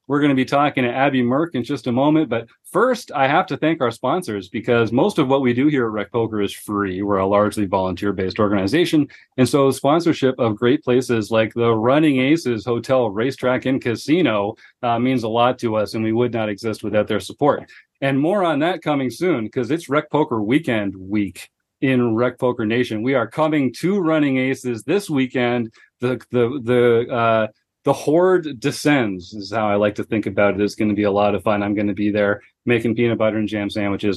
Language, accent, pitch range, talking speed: English, American, 105-135 Hz, 220 wpm